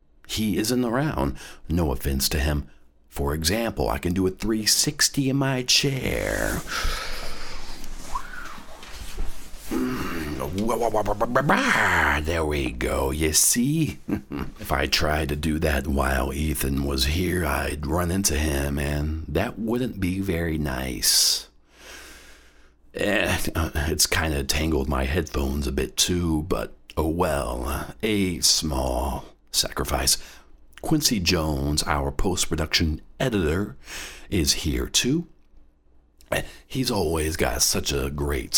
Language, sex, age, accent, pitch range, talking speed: English, male, 50-69, American, 70-90 Hz, 110 wpm